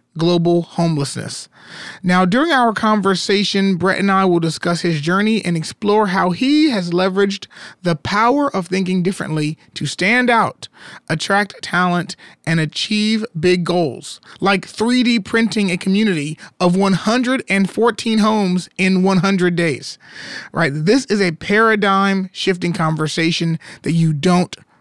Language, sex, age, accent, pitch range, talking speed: English, male, 30-49, American, 165-205 Hz, 130 wpm